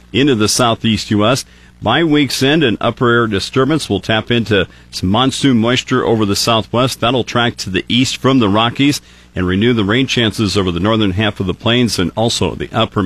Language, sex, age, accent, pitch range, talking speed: English, male, 50-69, American, 95-125 Hz, 205 wpm